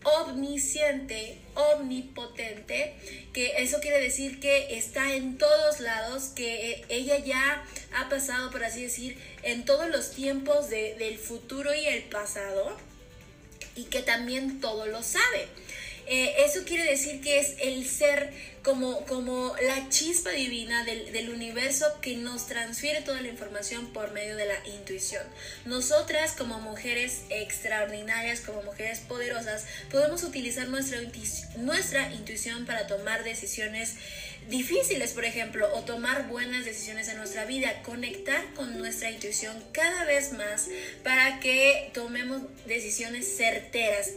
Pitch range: 225-285 Hz